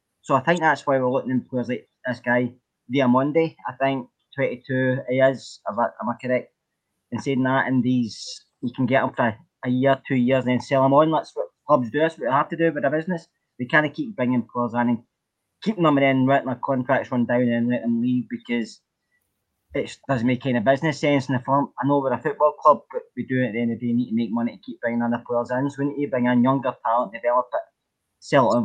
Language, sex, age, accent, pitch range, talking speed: English, male, 20-39, British, 120-140 Hz, 260 wpm